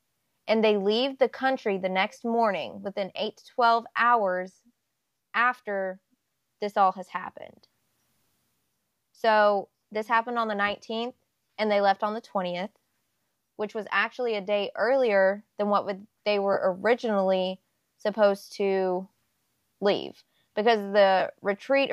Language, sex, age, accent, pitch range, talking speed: English, female, 20-39, American, 190-225 Hz, 130 wpm